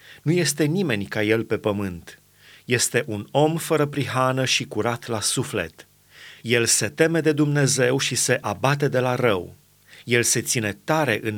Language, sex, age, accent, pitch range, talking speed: Romanian, male, 30-49, native, 110-145 Hz, 170 wpm